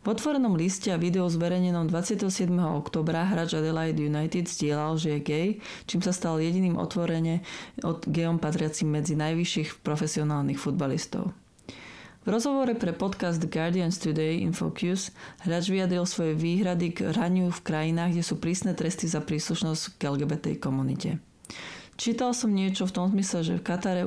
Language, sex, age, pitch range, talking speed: Slovak, female, 30-49, 160-185 Hz, 150 wpm